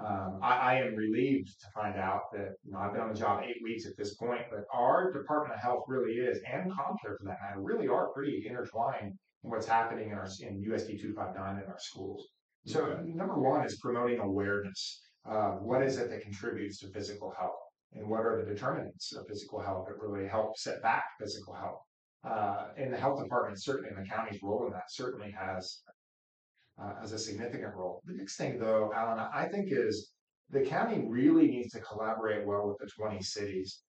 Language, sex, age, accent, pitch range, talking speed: English, male, 30-49, American, 100-130 Hz, 210 wpm